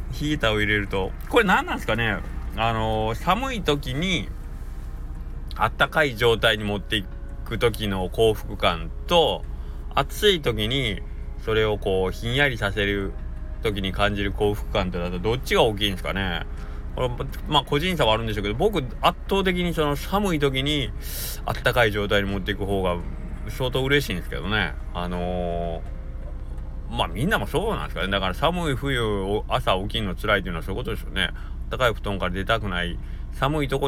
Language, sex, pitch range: Japanese, male, 80-120 Hz